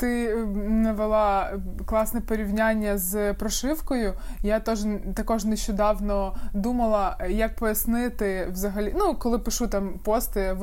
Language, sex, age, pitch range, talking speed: Ukrainian, male, 20-39, 195-230 Hz, 115 wpm